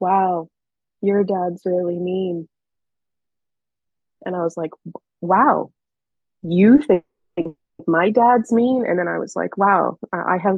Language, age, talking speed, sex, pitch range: English, 20-39, 130 wpm, female, 180-220 Hz